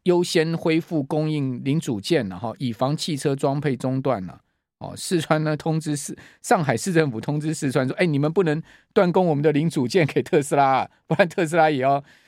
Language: Chinese